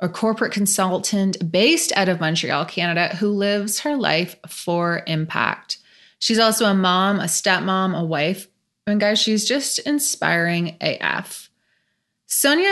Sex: female